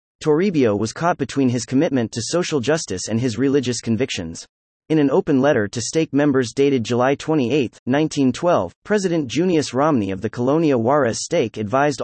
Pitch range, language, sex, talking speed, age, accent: 115-160 Hz, English, male, 165 wpm, 30-49, American